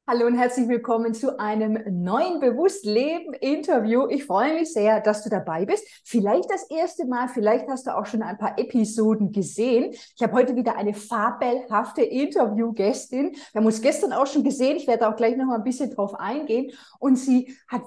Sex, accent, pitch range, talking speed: female, German, 230-295 Hz, 190 wpm